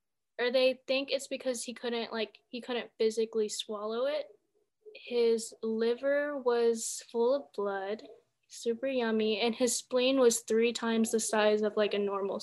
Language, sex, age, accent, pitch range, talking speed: English, female, 10-29, American, 220-255 Hz, 160 wpm